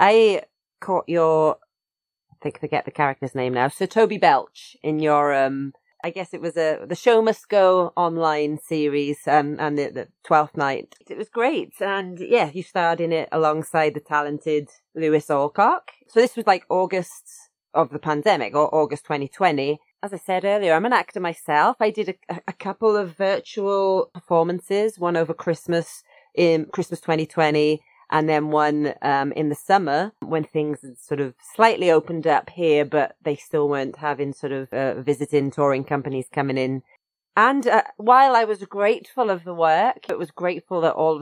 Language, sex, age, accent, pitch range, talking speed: English, female, 30-49, British, 150-200 Hz, 180 wpm